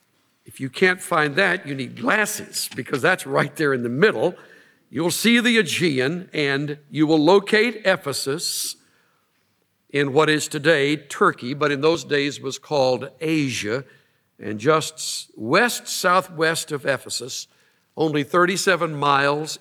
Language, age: English, 60-79